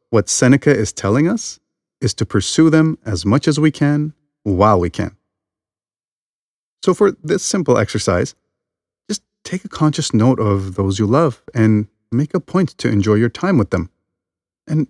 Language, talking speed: English, 170 wpm